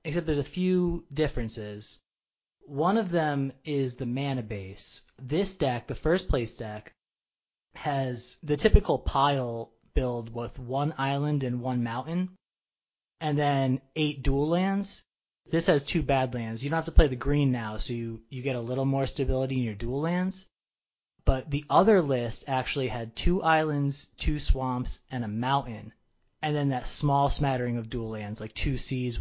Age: 20-39